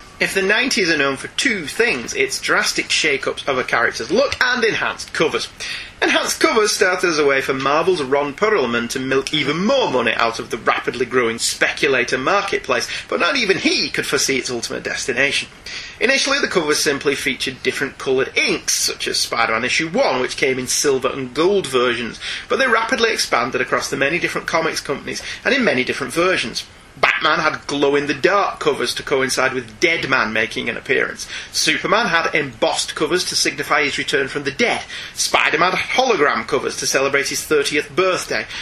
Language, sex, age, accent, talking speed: English, male, 30-49, British, 180 wpm